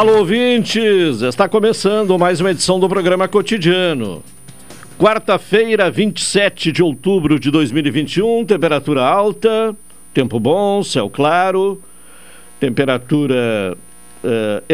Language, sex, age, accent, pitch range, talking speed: Portuguese, male, 60-79, Brazilian, 110-180 Hz, 100 wpm